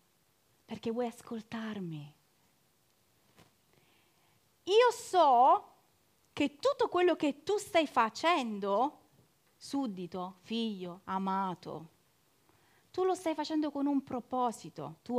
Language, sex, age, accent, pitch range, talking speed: Italian, female, 30-49, native, 195-290 Hz, 90 wpm